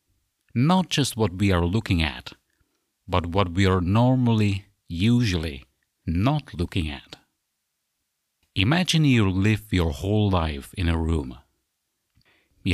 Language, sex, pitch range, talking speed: English, male, 85-110 Hz, 120 wpm